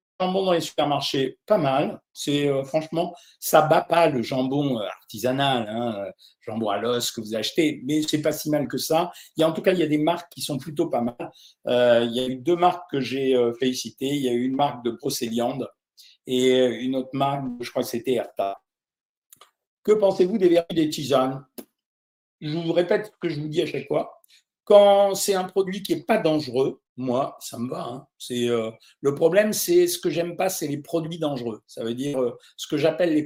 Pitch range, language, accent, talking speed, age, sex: 130-170 Hz, French, French, 220 wpm, 50-69, male